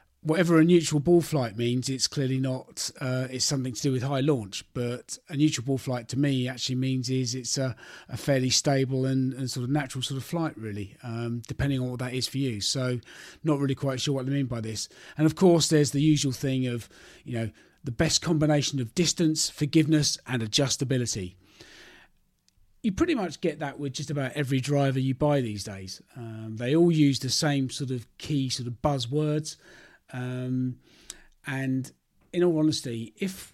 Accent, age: British, 40-59